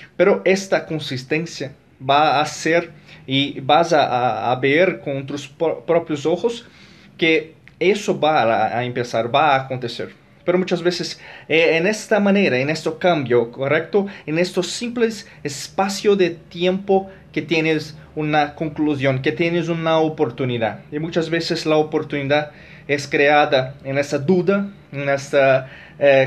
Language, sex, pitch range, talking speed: Spanish, male, 145-180 Hz, 145 wpm